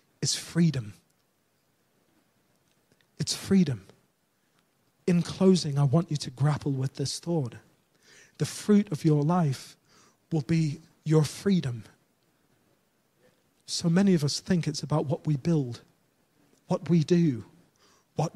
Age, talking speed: 40-59, 120 wpm